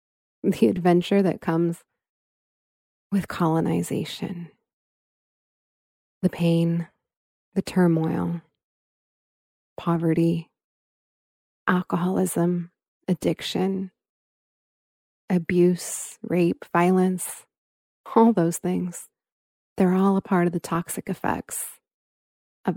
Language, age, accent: English, 30-49, American